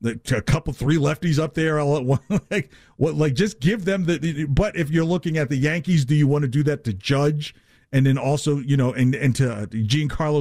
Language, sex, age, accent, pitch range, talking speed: English, male, 50-69, American, 130-155 Hz, 235 wpm